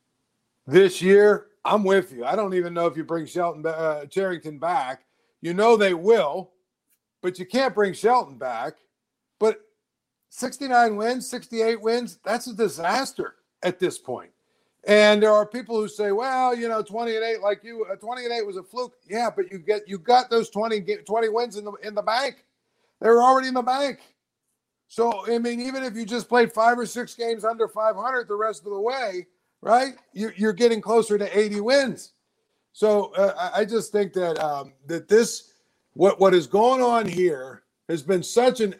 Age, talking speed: 50-69, 185 wpm